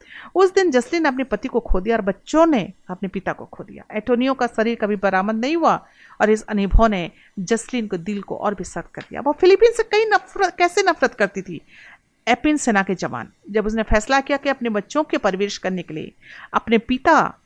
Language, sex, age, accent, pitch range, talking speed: Hindi, female, 40-59, native, 200-275 Hz, 220 wpm